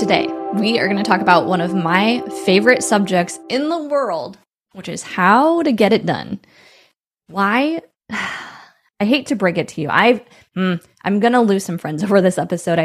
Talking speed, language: 185 wpm, English